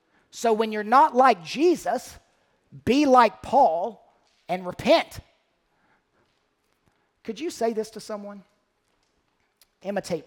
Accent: American